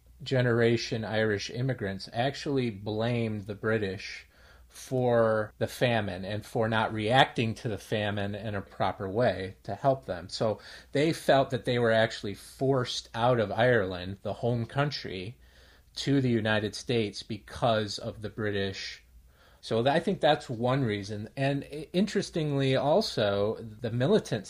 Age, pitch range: 30-49, 100-130 Hz